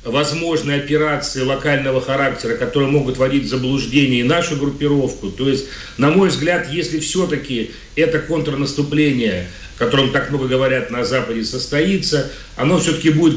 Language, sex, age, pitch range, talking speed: Russian, male, 40-59, 130-155 Hz, 135 wpm